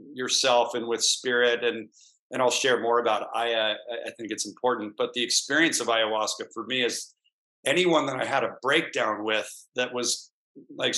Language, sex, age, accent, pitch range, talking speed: English, male, 40-59, American, 110-140 Hz, 185 wpm